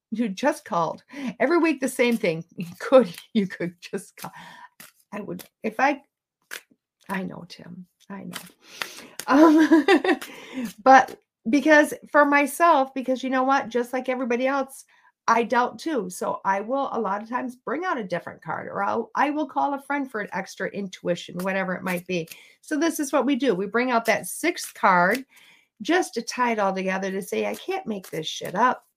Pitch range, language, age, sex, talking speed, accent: 195-275 Hz, English, 50-69, female, 185 wpm, American